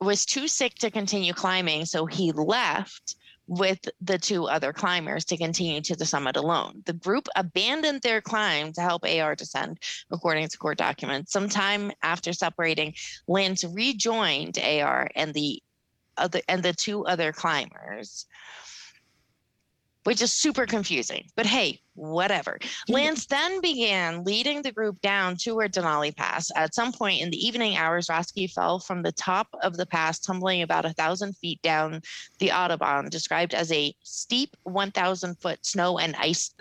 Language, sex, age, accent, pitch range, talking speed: English, female, 20-39, American, 160-210 Hz, 155 wpm